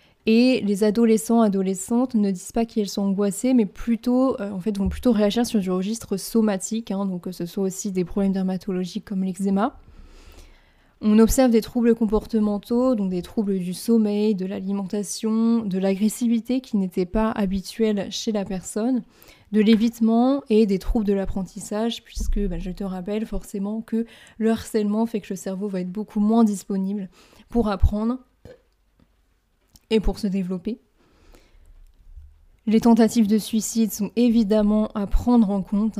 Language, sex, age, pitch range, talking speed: French, female, 20-39, 190-225 Hz, 160 wpm